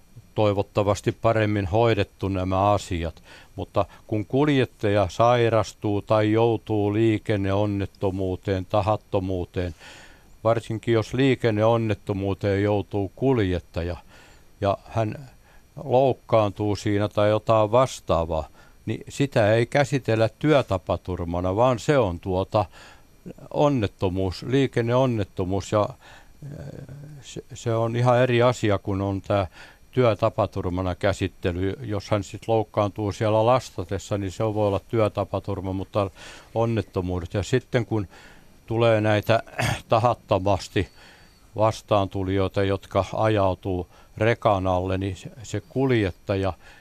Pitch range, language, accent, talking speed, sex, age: 95-115 Hz, Finnish, native, 95 wpm, male, 60-79